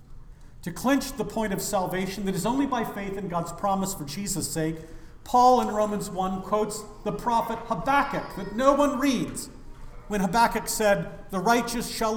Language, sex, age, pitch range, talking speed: English, male, 50-69, 180-225 Hz, 175 wpm